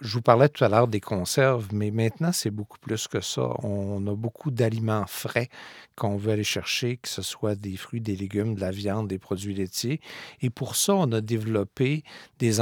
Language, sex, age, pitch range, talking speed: French, male, 50-69, 105-130 Hz, 210 wpm